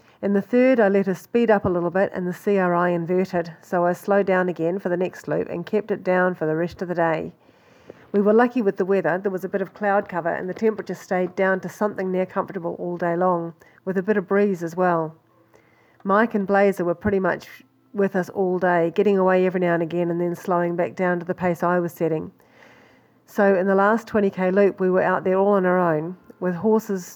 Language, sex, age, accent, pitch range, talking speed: English, female, 40-59, Australian, 175-200 Hz, 240 wpm